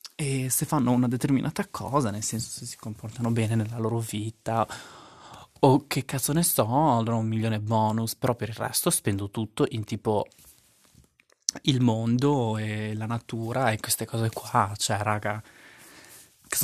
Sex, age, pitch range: male, 20-39, 110-130 Hz